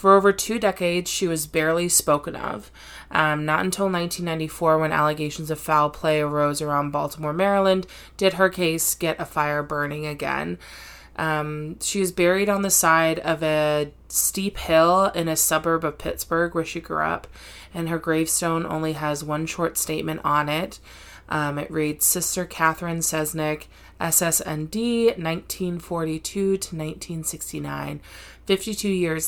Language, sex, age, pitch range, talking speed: English, female, 20-39, 155-185 Hz, 145 wpm